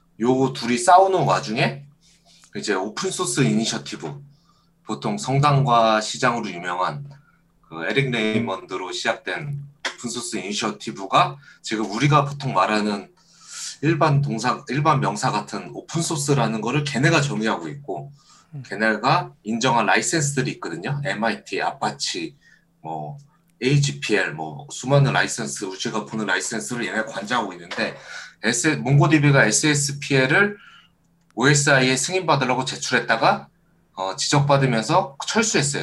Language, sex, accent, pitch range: Korean, male, native, 115-150 Hz